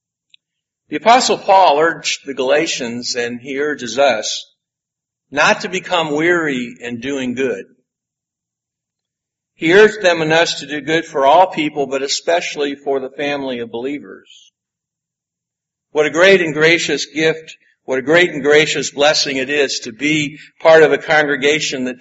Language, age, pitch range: English, 50-69, 140-175 Hz